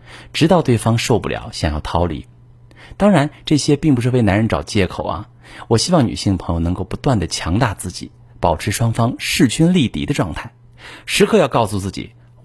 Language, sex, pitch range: Chinese, male, 90-120 Hz